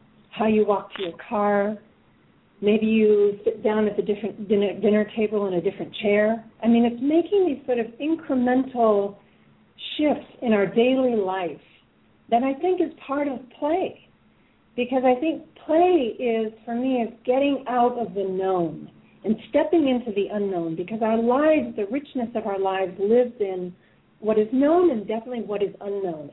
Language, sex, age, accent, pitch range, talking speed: English, female, 40-59, American, 195-245 Hz, 170 wpm